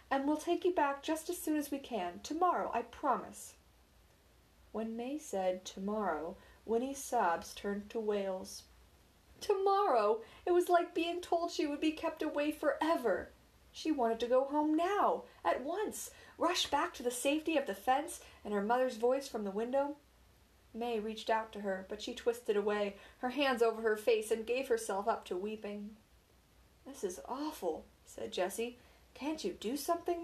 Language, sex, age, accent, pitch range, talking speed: English, female, 40-59, American, 205-300 Hz, 180 wpm